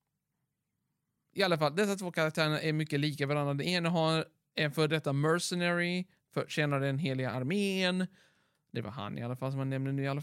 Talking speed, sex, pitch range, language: 190 wpm, male, 135-170 Hz, Swedish